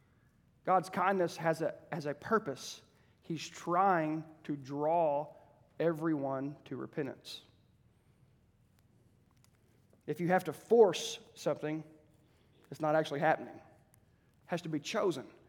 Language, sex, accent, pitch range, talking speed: English, male, American, 145-185 Hz, 110 wpm